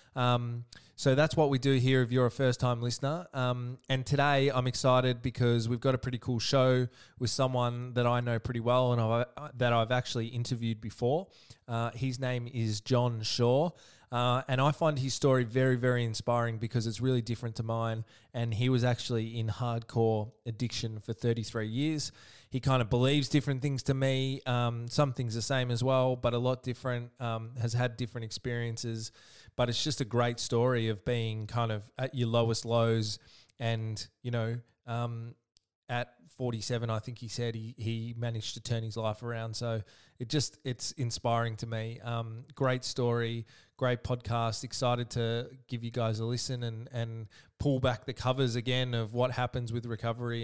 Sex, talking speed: male, 185 wpm